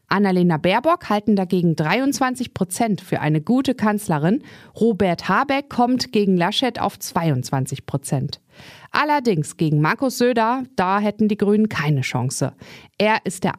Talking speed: 135 wpm